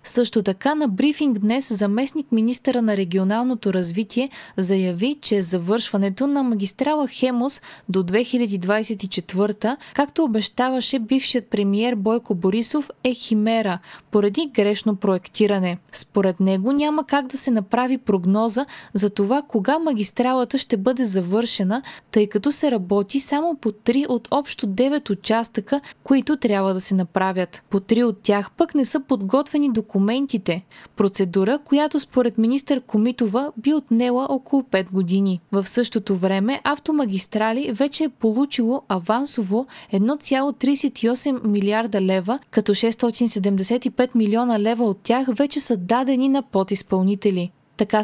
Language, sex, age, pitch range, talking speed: Bulgarian, female, 20-39, 200-270 Hz, 125 wpm